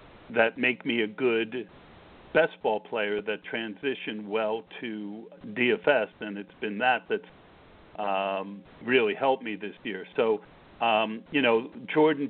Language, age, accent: English, 50-69, American